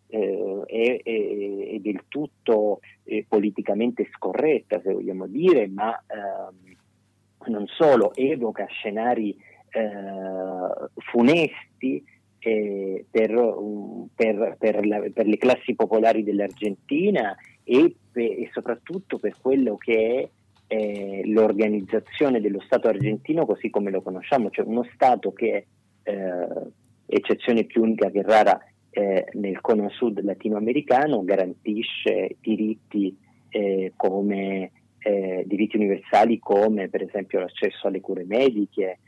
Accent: native